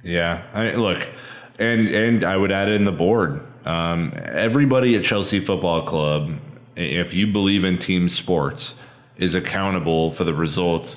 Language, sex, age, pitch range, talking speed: English, male, 20-39, 85-105 Hz, 155 wpm